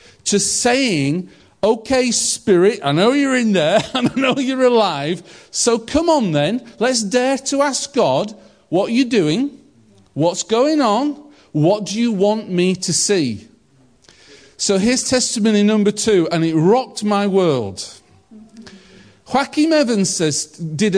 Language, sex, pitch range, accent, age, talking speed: English, male, 155-230 Hz, British, 40-59, 145 wpm